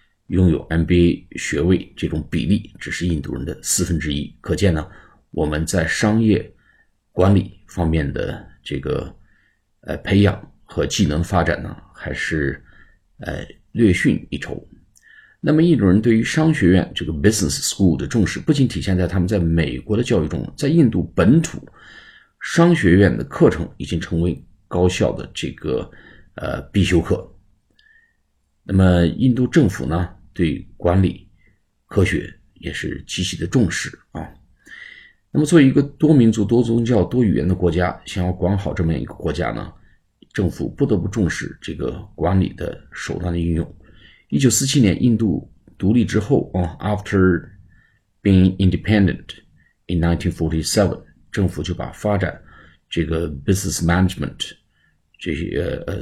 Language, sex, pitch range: Chinese, male, 85-105 Hz